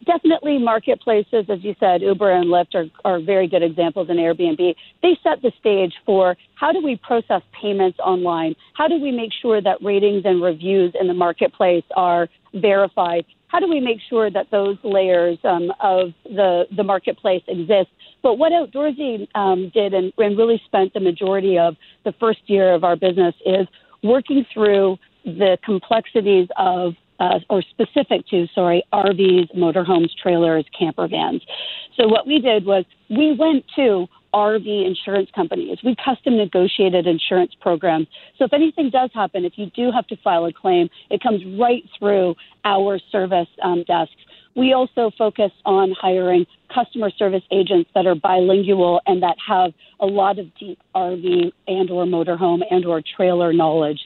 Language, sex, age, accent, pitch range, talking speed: English, female, 40-59, American, 180-225 Hz, 170 wpm